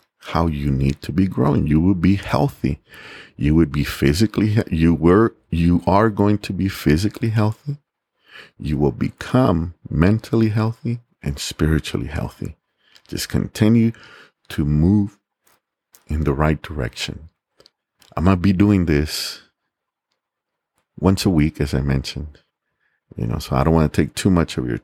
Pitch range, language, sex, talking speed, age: 75-95 Hz, English, male, 150 wpm, 50-69